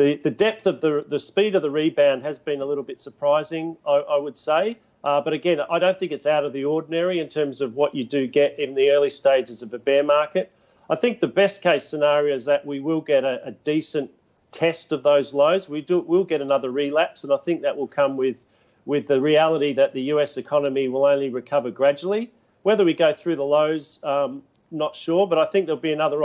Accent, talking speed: Australian, 230 wpm